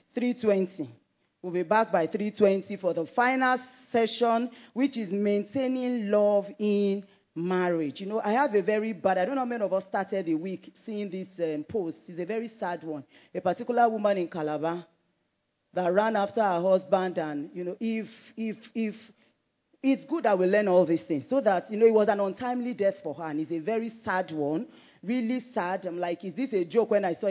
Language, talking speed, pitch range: English, 205 wpm, 175-220 Hz